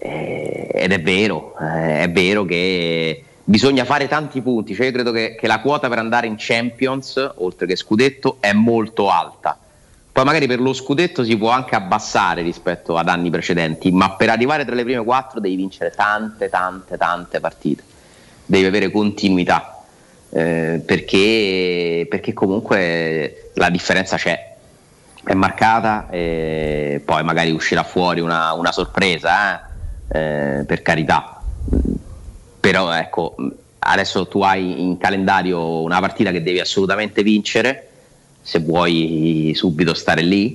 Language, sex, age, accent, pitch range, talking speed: Italian, male, 30-49, native, 85-105 Hz, 140 wpm